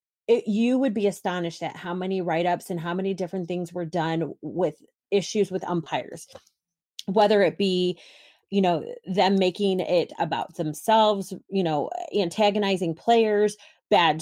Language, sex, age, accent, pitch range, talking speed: English, female, 30-49, American, 185-230 Hz, 145 wpm